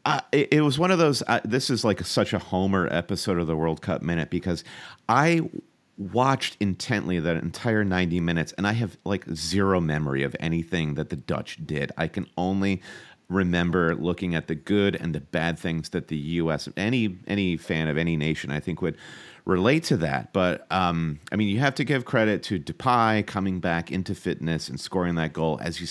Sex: male